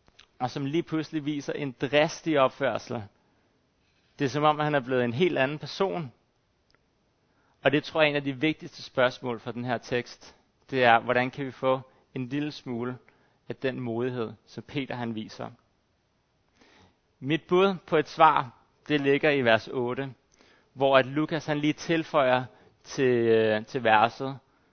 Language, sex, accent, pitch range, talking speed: Danish, male, native, 125-150 Hz, 165 wpm